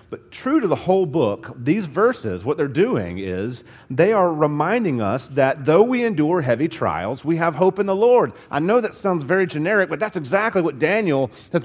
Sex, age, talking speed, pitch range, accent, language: male, 40-59, 205 wpm, 130-185 Hz, American, English